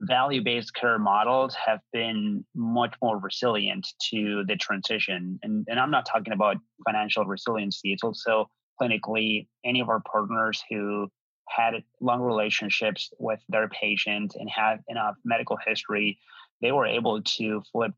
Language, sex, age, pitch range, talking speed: English, male, 30-49, 105-120 Hz, 145 wpm